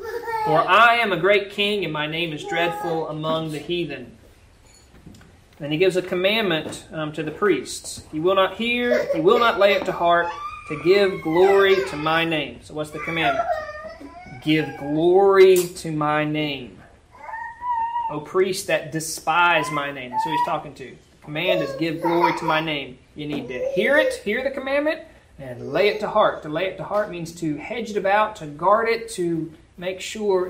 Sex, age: male, 30-49